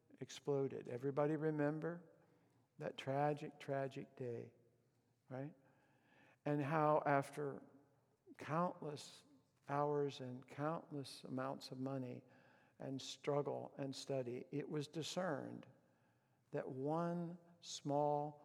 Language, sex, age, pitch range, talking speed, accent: English, male, 60-79, 130-155 Hz, 90 wpm, American